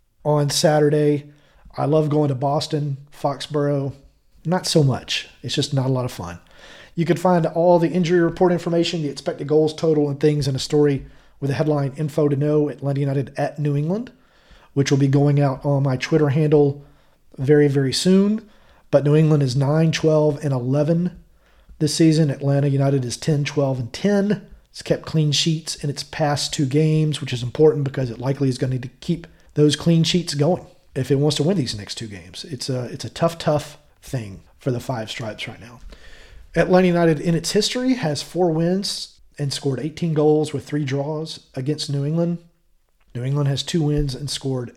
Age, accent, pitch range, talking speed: 40-59, American, 140-165 Hz, 195 wpm